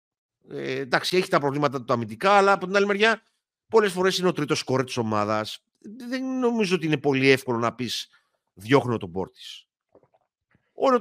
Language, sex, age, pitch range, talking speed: Greek, male, 50-69, 125-200 Hz, 170 wpm